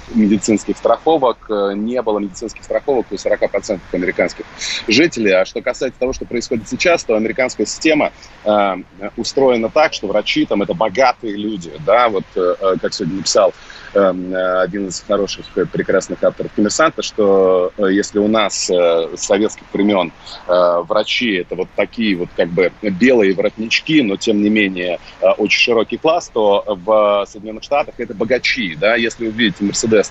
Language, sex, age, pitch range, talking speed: Russian, male, 30-49, 95-115 Hz, 155 wpm